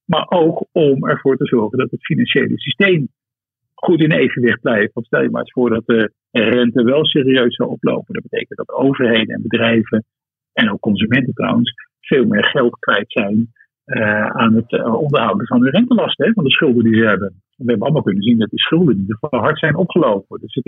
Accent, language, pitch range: Dutch, Dutch, 115-155 Hz